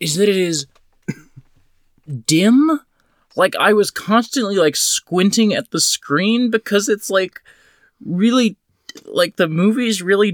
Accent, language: American, English